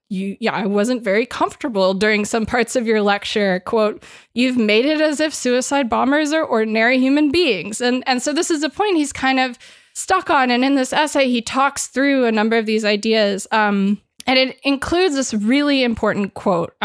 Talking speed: 200 wpm